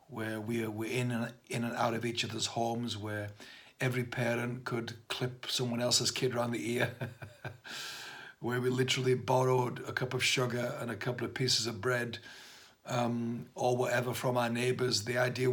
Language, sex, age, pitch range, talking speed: English, male, 60-79, 115-125 Hz, 165 wpm